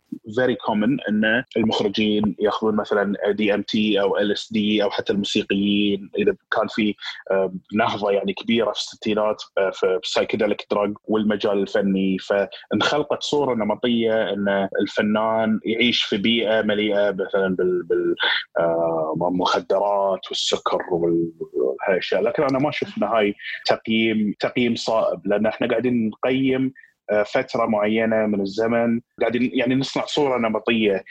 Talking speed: 125 wpm